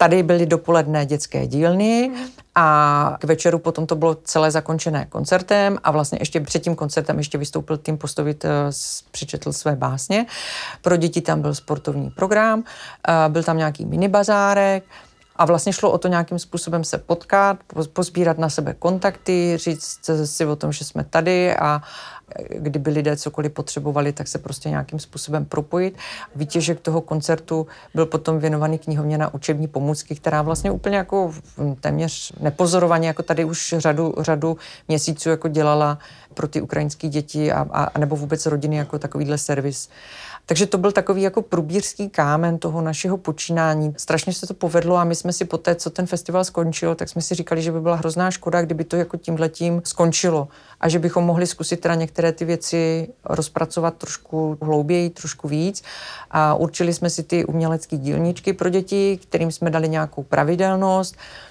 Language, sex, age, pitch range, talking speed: Czech, female, 40-59, 155-175 Hz, 165 wpm